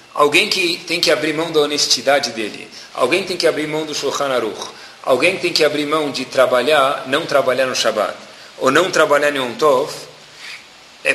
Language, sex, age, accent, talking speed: Portuguese, male, 40-59, Brazilian, 190 wpm